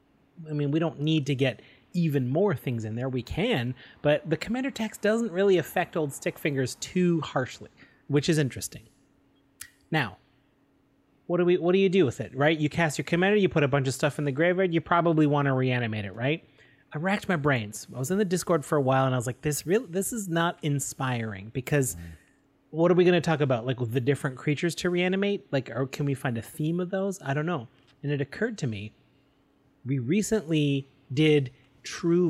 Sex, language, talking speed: male, English, 220 wpm